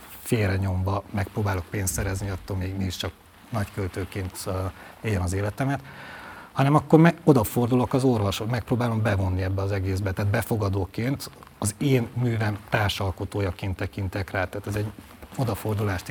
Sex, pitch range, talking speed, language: male, 95-115 Hz, 135 wpm, Hungarian